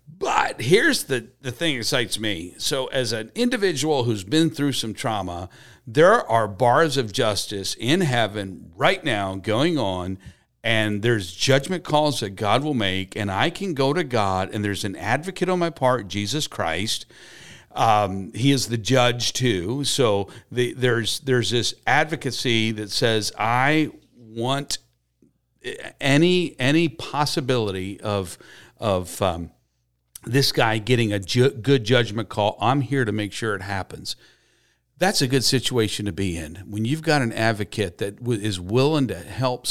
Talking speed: 155 wpm